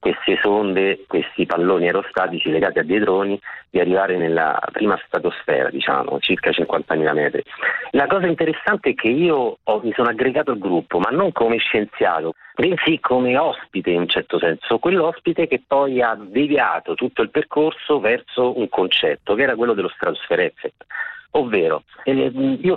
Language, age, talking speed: Italian, 40-59, 155 wpm